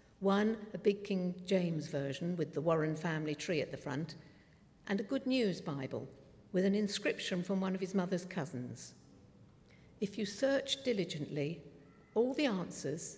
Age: 60-79